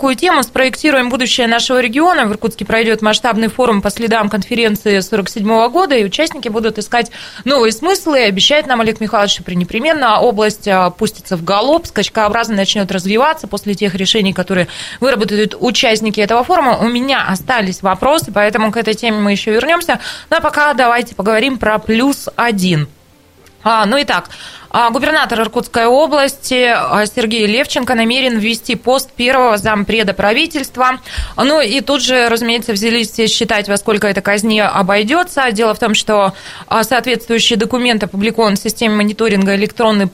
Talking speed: 145 wpm